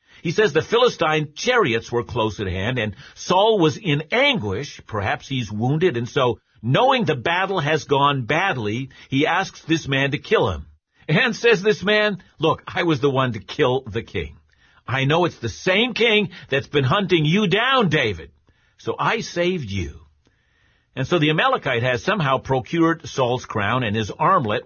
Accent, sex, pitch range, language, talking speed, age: American, male, 115-165 Hz, English, 180 wpm, 50-69